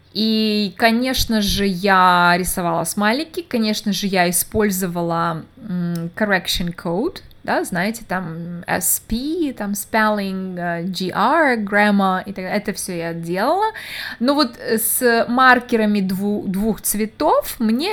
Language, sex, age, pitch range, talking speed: Russian, female, 20-39, 185-245 Hz, 115 wpm